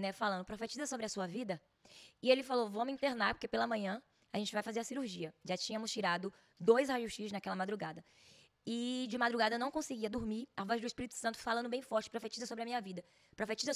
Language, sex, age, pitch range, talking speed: Portuguese, female, 10-29, 200-240 Hz, 215 wpm